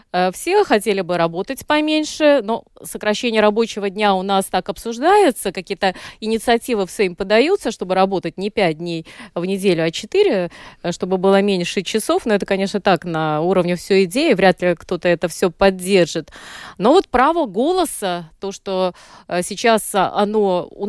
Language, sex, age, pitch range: Russian, female, 20-39, 185-240 Hz